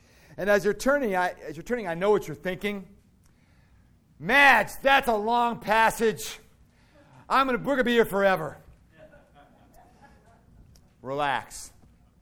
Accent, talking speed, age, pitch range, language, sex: American, 125 wpm, 40-59, 130-180 Hz, English, male